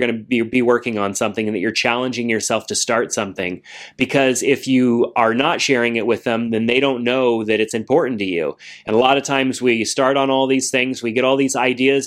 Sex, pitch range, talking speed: male, 115-130 Hz, 245 wpm